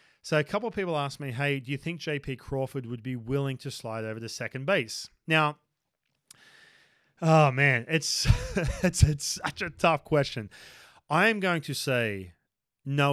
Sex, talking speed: male, 175 wpm